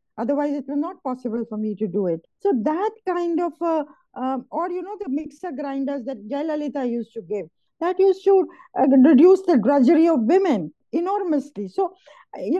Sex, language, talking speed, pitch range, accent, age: female, English, 185 wpm, 235-325 Hz, Indian, 50-69